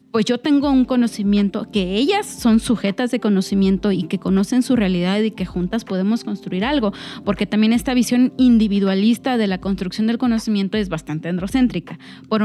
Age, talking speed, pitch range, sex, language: 30-49, 175 wpm, 205-250 Hz, female, Spanish